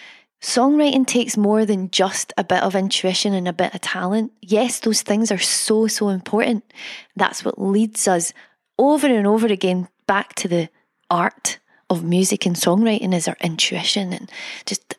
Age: 20-39